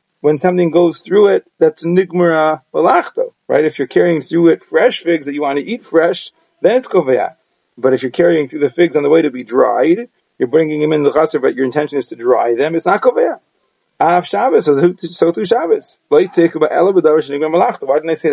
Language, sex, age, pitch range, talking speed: English, male, 30-49, 145-210 Hz, 205 wpm